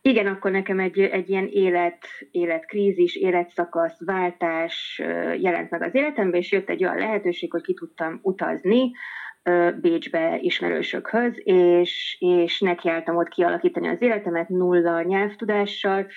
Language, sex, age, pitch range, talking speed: Hungarian, female, 30-49, 175-210 Hz, 125 wpm